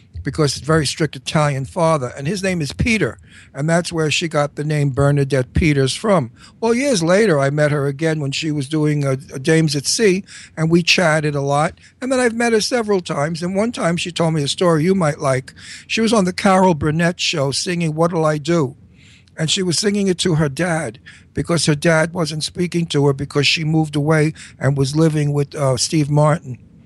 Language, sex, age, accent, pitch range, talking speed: English, male, 60-79, American, 135-165 Hz, 220 wpm